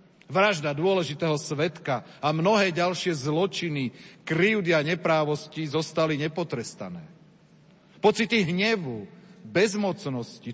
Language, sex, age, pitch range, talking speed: Slovak, male, 40-59, 160-190 Hz, 80 wpm